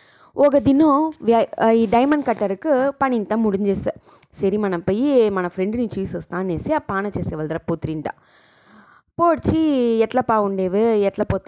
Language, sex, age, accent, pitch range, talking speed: English, female, 20-39, Indian, 175-220 Hz, 125 wpm